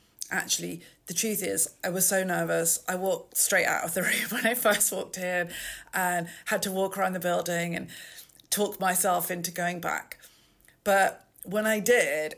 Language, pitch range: English, 175-210 Hz